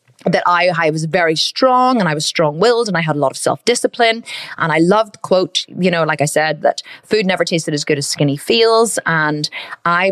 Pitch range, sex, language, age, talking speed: 160-190 Hz, female, English, 30-49, 220 wpm